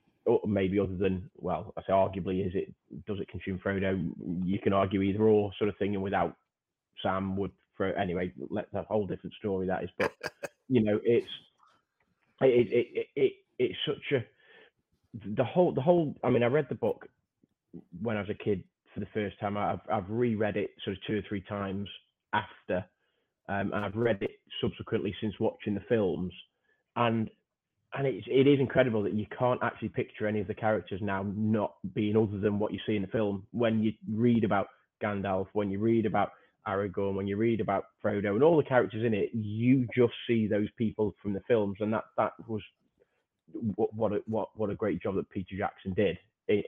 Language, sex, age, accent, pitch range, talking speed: English, male, 20-39, British, 100-115 Hz, 205 wpm